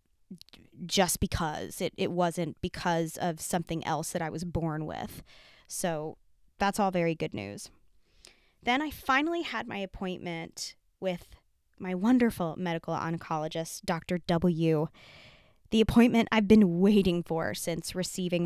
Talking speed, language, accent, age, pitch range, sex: 135 wpm, English, American, 20-39, 165-190 Hz, female